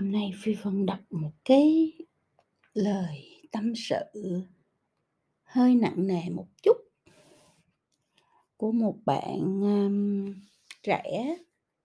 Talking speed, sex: 95 wpm, female